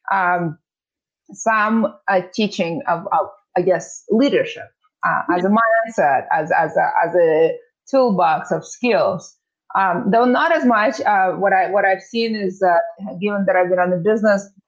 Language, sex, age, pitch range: English, female, 20-39, 190-245 Hz